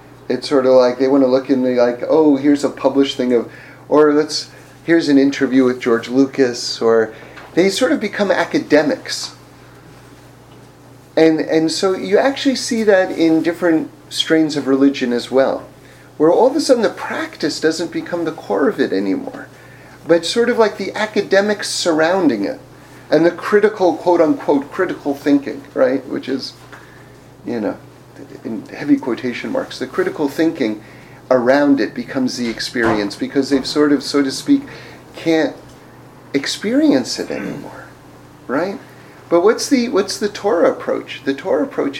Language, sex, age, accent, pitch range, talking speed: English, male, 40-59, American, 135-195 Hz, 160 wpm